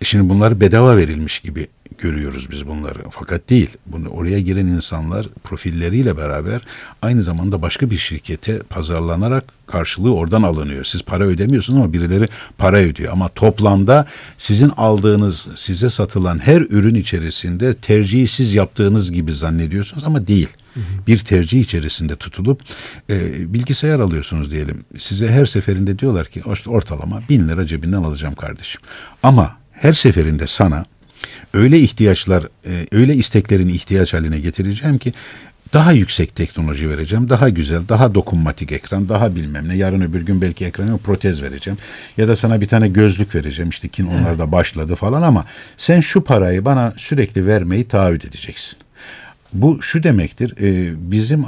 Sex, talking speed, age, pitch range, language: male, 140 wpm, 60-79, 85-115 Hz, Turkish